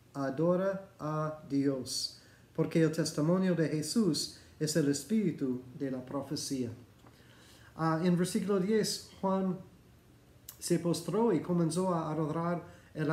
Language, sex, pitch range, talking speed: Spanish, male, 135-170 Hz, 120 wpm